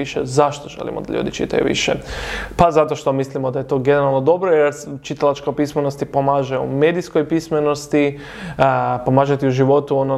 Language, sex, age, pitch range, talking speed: English, male, 20-39, 135-150 Hz, 165 wpm